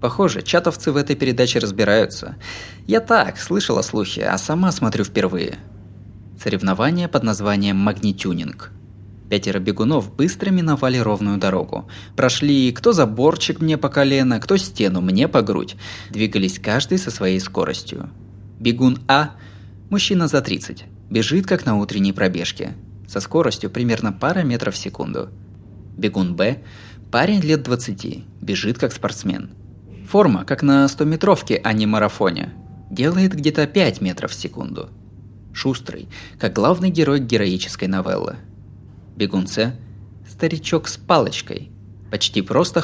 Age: 20-39